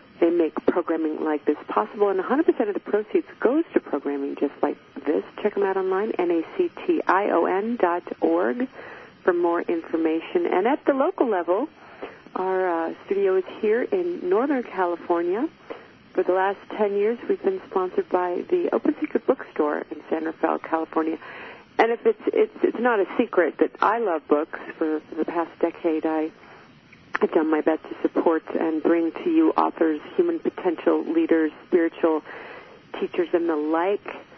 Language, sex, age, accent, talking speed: English, female, 50-69, American, 175 wpm